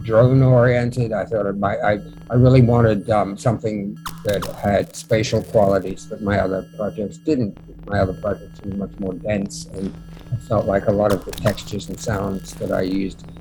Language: English